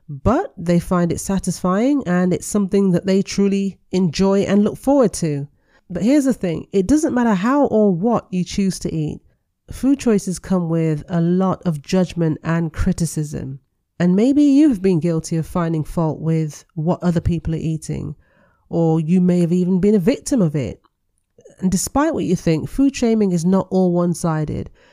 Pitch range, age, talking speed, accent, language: 165-200 Hz, 40-59, 180 wpm, British, English